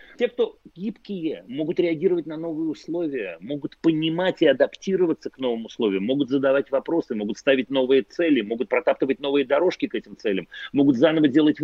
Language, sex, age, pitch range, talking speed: Russian, male, 40-59, 135-195 Hz, 165 wpm